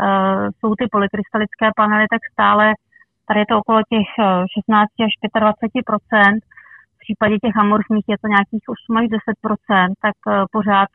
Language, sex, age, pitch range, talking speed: Czech, female, 30-49, 195-215 Hz, 140 wpm